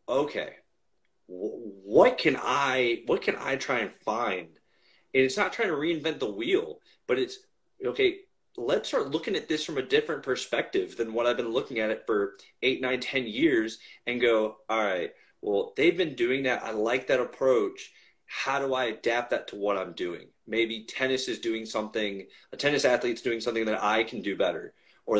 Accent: American